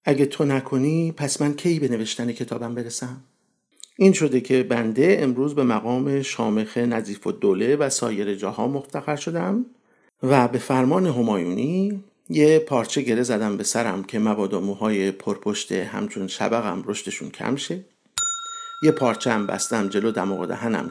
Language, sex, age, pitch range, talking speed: Persian, male, 50-69, 115-170 Hz, 150 wpm